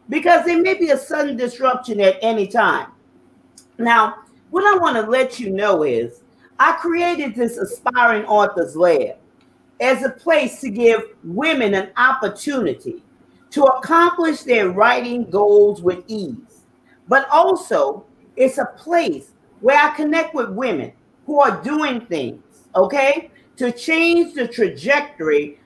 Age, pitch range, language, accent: 40-59, 235-330 Hz, English, American